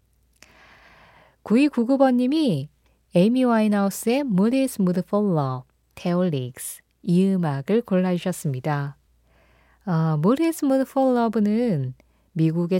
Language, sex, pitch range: Korean, female, 165-255 Hz